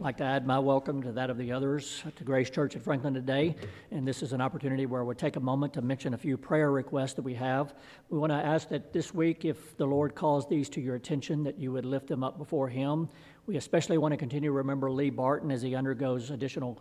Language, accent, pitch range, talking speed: English, American, 130-150 Hz, 255 wpm